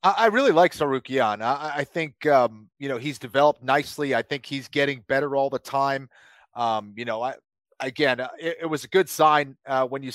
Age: 30-49